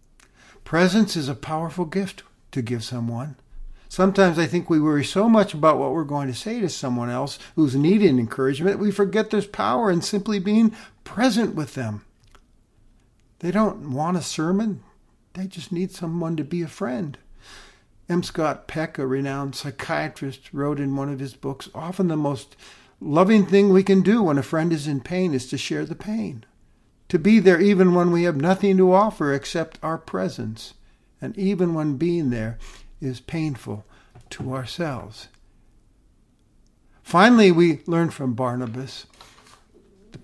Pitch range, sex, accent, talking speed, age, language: 135-190 Hz, male, American, 165 wpm, 50-69, English